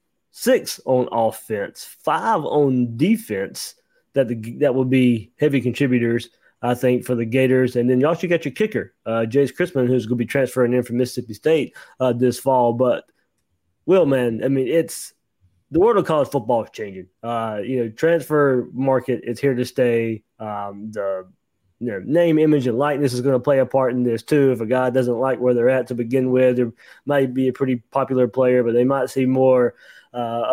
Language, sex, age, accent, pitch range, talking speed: English, male, 20-39, American, 125-140 Hz, 205 wpm